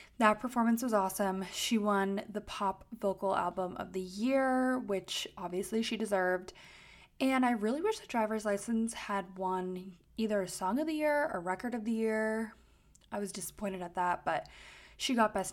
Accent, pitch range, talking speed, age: American, 185-225 Hz, 180 wpm, 20-39